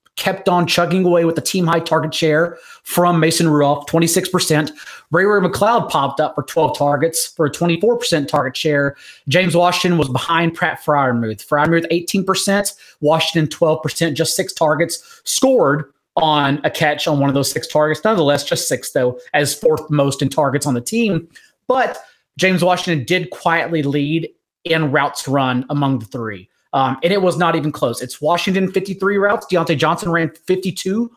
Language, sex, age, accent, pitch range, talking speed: English, male, 30-49, American, 150-180 Hz, 185 wpm